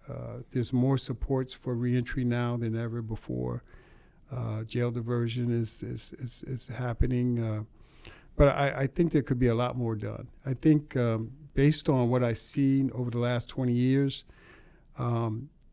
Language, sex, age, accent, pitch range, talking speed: English, male, 60-79, American, 120-140 Hz, 170 wpm